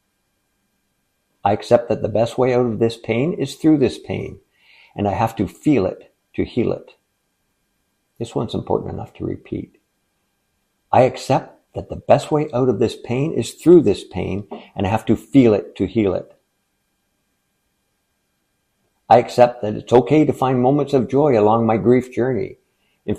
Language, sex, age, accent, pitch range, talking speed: English, male, 60-79, American, 100-130 Hz, 175 wpm